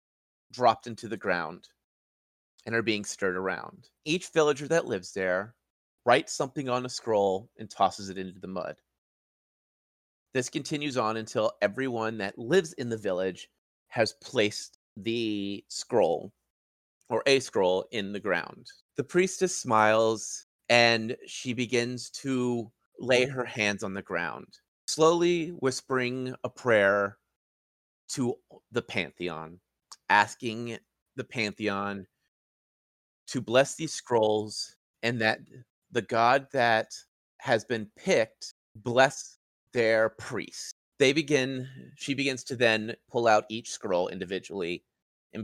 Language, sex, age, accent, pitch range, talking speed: English, male, 30-49, American, 105-135 Hz, 125 wpm